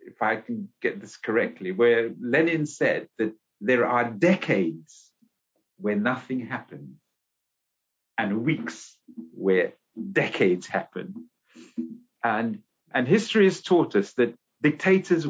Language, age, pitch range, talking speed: English, 50-69, 115-175 Hz, 115 wpm